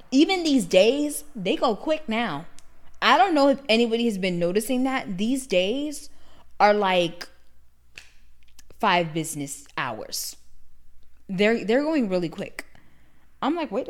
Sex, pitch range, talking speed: female, 175-240 Hz, 135 wpm